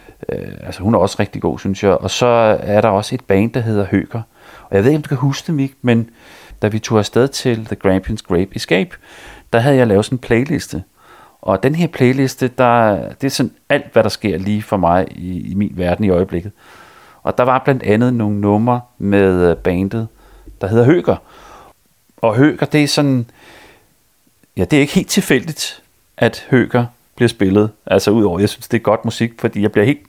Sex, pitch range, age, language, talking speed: male, 100-125 Hz, 30-49, Danish, 210 wpm